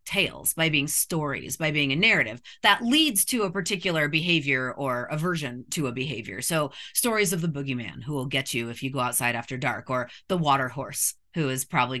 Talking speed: 205 wpm